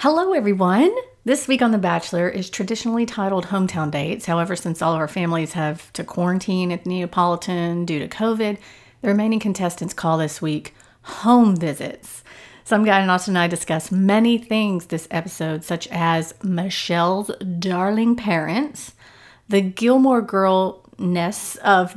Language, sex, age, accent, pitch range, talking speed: English, female, 40-59, American, 170-220 Hz, 150 wpm